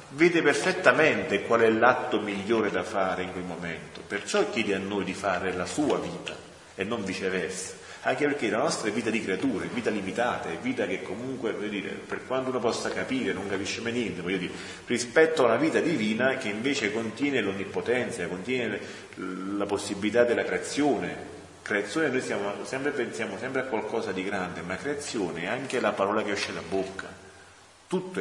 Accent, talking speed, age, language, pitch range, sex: native, 185 wpm, 40-59, Italian, 90-125 Hz, male